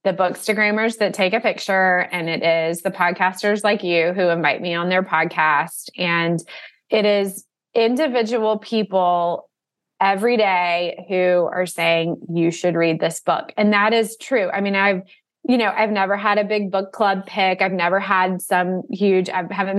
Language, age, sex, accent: English, 20-39, female, American